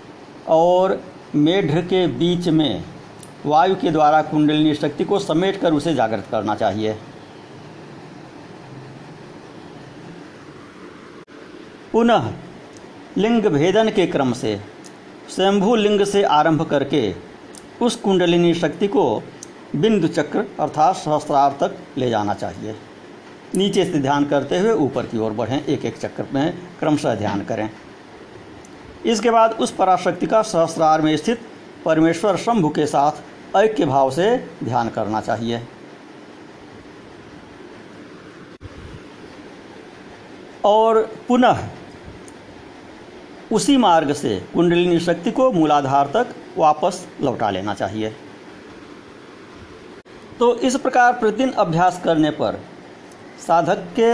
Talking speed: 105 wpm